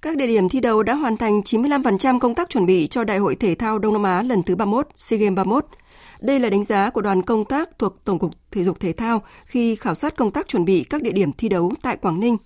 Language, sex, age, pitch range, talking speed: Vietnamese, female, 20-39, 190-255 Hz, 275 wpm